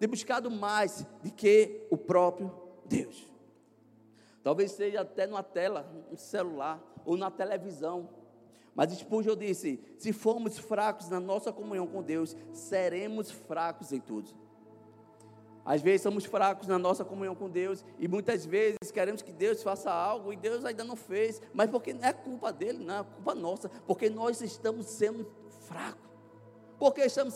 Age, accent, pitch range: 20-39, Brazilian, 170-225 Hz